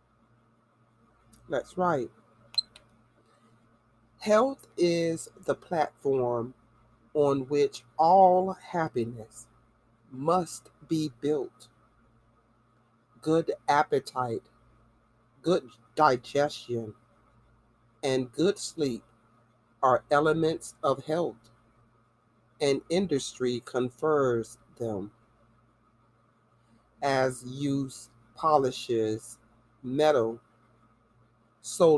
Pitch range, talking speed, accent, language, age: 115-150 Hz, 60 wpm, American, English, 40-59